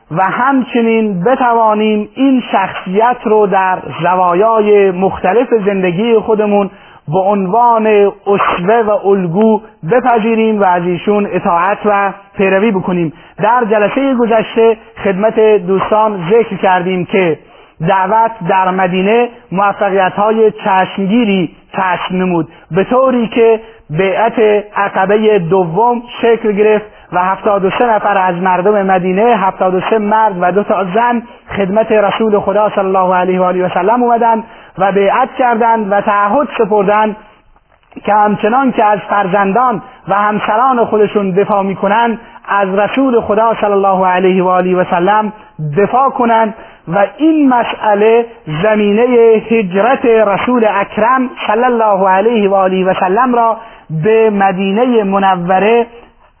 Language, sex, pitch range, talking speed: Persian, male, 190-225 Hz, 125 wpm